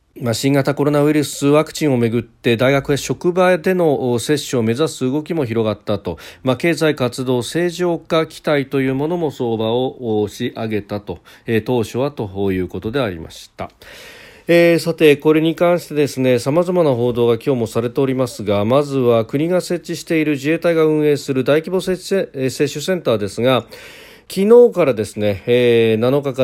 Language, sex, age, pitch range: Japanese, male, 40-59, 115-165 Hz